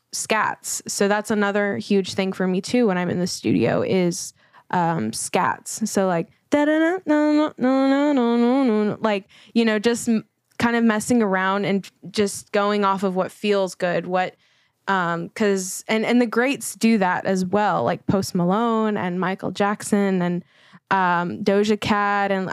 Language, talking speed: English, 150 wpm